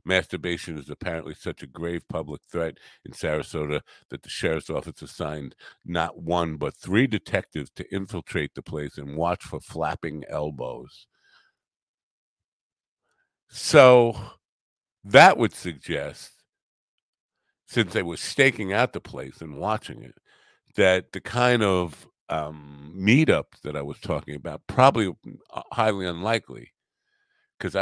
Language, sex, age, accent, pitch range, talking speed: English, male, 50-69, American, 75-110 Hz, 125 wpm